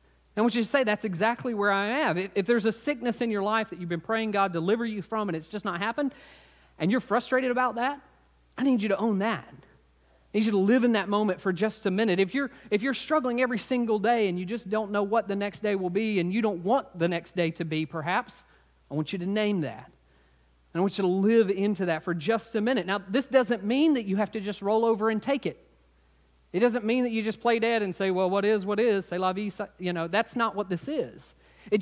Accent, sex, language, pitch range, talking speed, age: American, male, English, 175-235 Hz, 260 wpm, 40-59